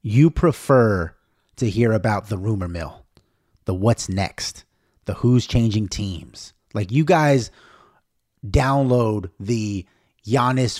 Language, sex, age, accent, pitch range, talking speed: English, male, 30-49, American, 100-125 Hz, 115 wpm